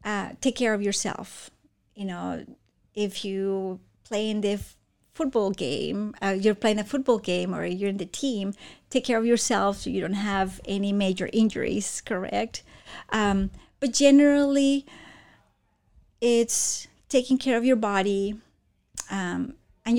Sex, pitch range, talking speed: female, 190-230 Hz, 145 wpm